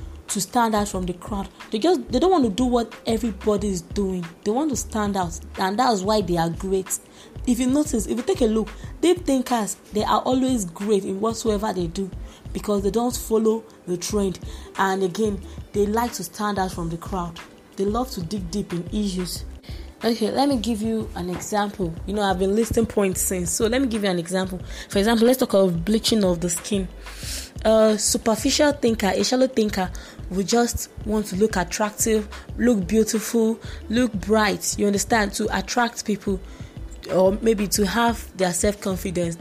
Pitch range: 190-230 Hz